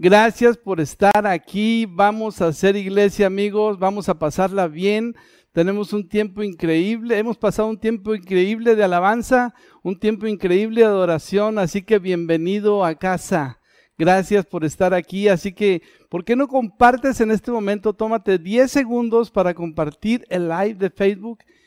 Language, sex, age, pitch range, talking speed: Spanish, male, 50-69, 180-220 Hz, 155 wpm